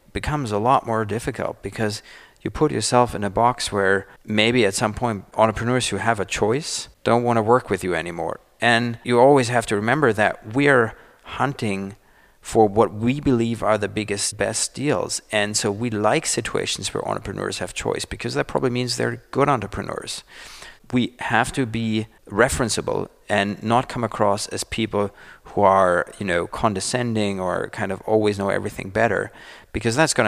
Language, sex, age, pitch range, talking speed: German, male, 40-59, 100-125 Hz, 175 wpm